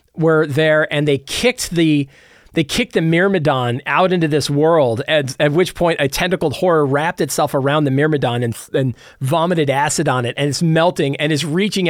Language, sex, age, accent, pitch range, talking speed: English, male, 40-59, American, 145-195 Hz, 190 wpm